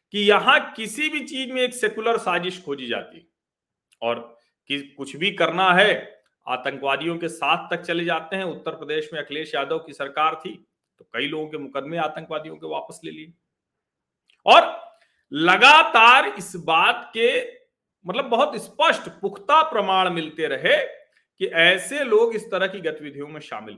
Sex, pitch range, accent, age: male, 155-250 Hz, native, 40-59